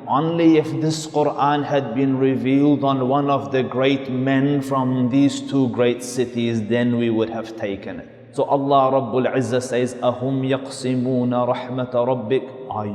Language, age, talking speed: English, 30-49, 150 wpm